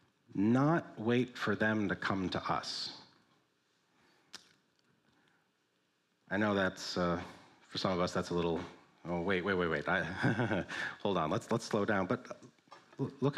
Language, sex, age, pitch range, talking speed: English, male, 40-59, 110-145 Hz, 150 wpm